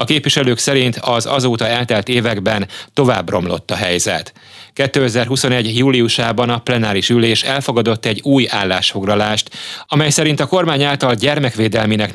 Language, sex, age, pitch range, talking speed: Hungarian, male, 30-49, 105-130 Hz, 130 wpm